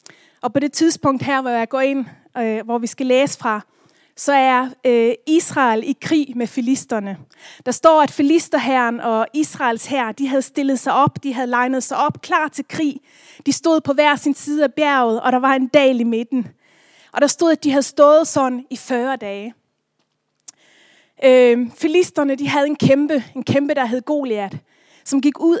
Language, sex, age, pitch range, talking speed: Danish, female, 30-49, 235-290 Hz, 195 wpm